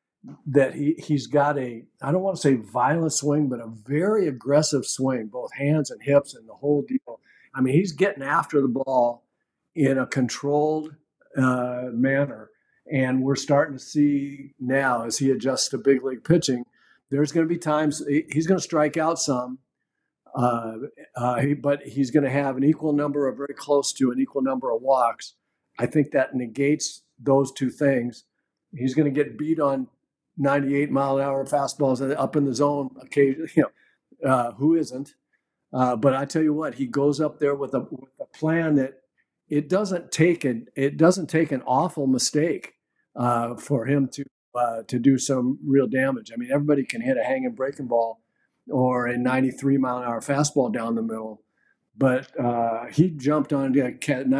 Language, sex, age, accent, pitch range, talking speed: English, male, 50-69, American, 130-150 Hz, 185 wpm